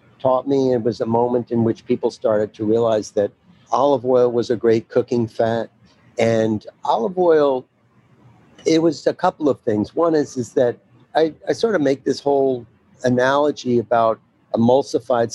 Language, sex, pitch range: English, male, 105-130 Hz